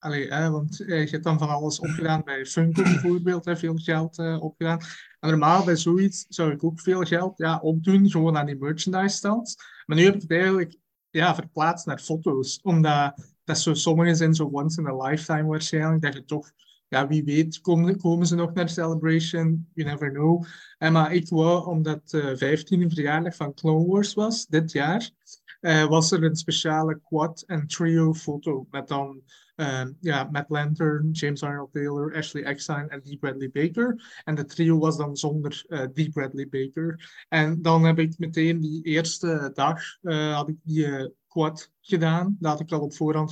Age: 30-49